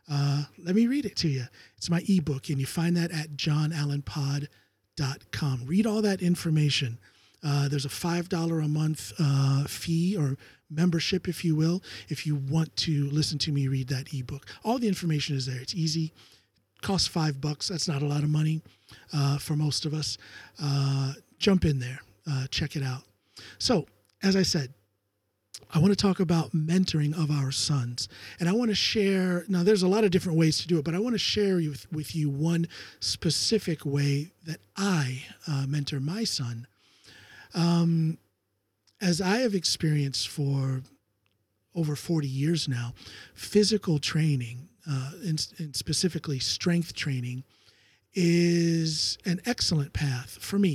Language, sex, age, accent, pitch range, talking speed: English, male, 40-59, American, 135-170 Hz, 165 wpm